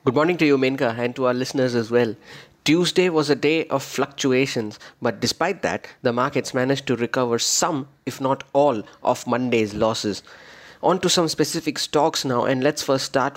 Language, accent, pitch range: English, Indian, 130-150 Hz